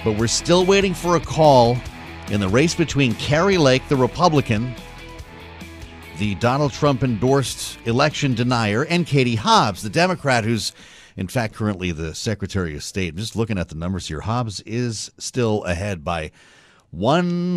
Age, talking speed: 40-59, 155 wpm